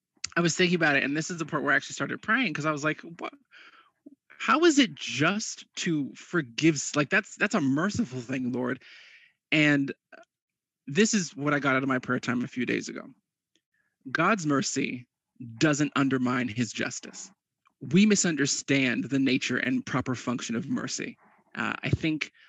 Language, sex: English, male